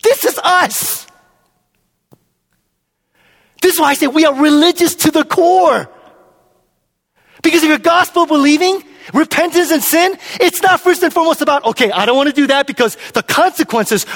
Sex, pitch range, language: male, 275-345 Hz, English